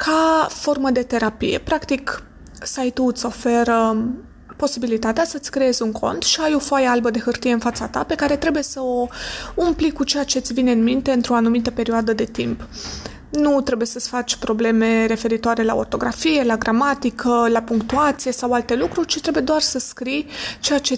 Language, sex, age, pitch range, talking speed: Romanian, female, 20-39, 235-275 Hz, 180 wpm